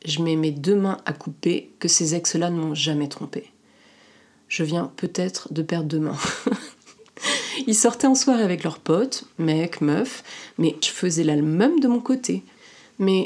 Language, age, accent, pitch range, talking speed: French, 30-49, French, 160-215 Hz, 180 wpm